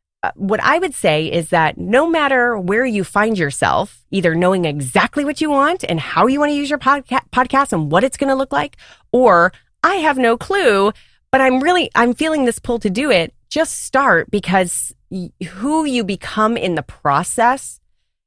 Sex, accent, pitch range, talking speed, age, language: female, American, 165-255 Hz, 190 wpm, 30-49, English